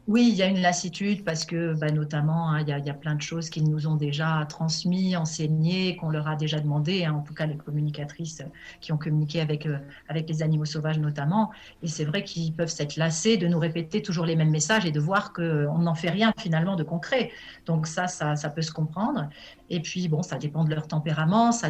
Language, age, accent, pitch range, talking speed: French, 40-59, French, 155-185 Hz, 230 wpm